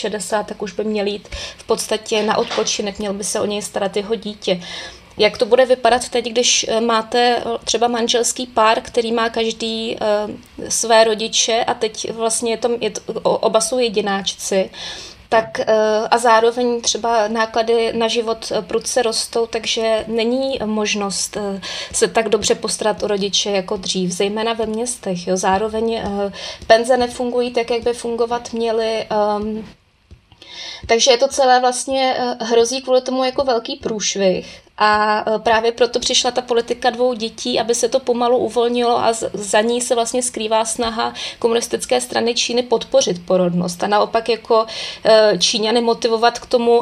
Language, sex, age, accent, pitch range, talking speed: Czech, female, 20-39, native, 215-245 Hz, 160 wpm